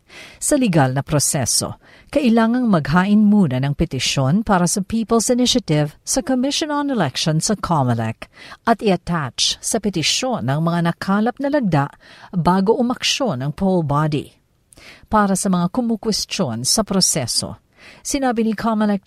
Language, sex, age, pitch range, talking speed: Filipino, female, 50-69, 160-225 Hz, 130 wpm